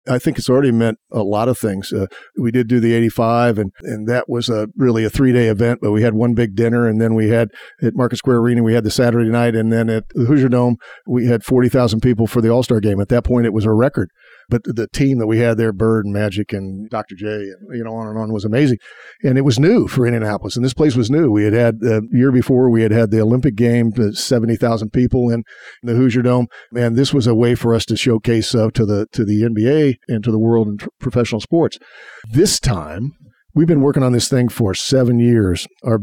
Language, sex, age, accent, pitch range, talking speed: English, male, 50-69, American, 110-125 Hz, 250 wpm